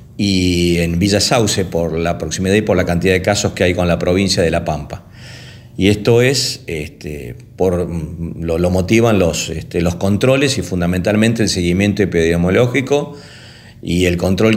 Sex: male